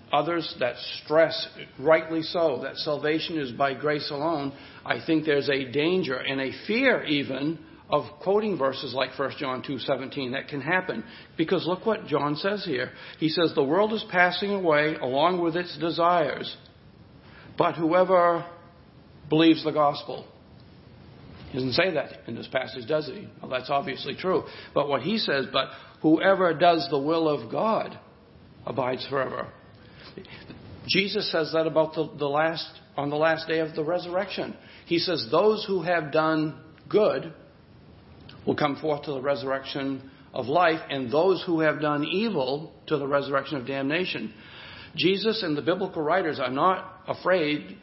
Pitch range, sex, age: 140-175 Hz, male, 60-79